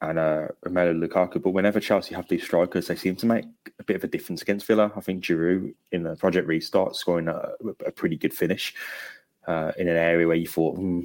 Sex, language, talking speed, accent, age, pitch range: male, English, 230 wpm, British, 20-39, 85-115 Hz